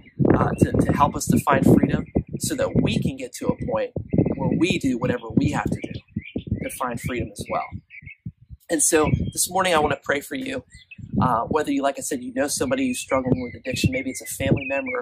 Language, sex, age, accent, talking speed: English, male, 30-49, American, 230 wpm